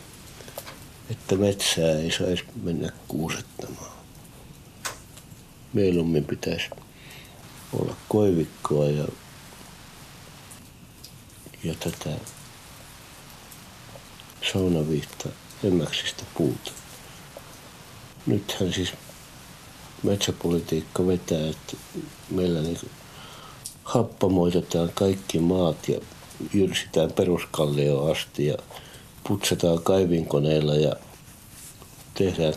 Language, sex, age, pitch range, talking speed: Finnish, male, 60-79, 80-110 Hz, 65 wpm